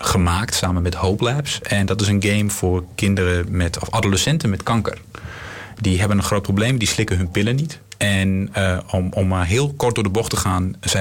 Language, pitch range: Dutch, 95-110 Hz